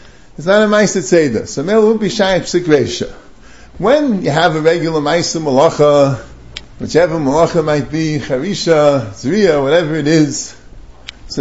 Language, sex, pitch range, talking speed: English, male, 150-230 Hz, 130 wpm